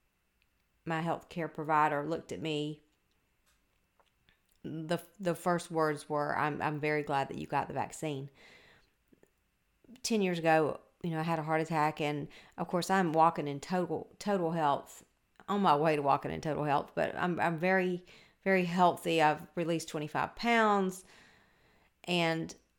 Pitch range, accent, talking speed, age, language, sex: 150-175 Hz, American, 155 wpm, 40-59, English, female